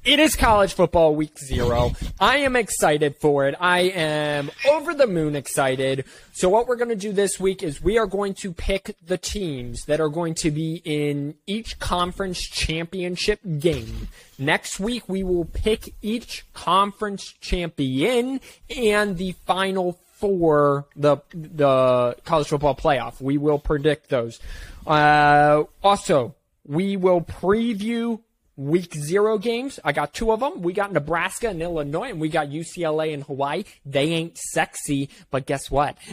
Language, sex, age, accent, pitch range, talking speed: English, male, 20-39, American, 140-195 Hz, 155 wpm